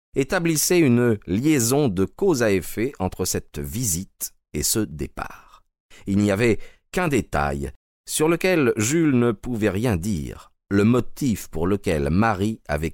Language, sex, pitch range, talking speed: French, male, 80-110 Hz, 145 wpm